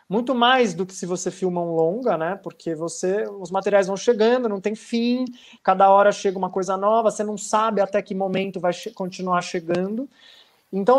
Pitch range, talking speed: 185-240 Hz, 185 wpm